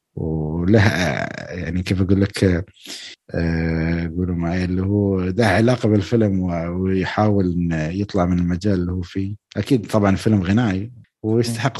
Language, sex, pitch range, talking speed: Arabic, male, 95-120 Hz, 120 wpm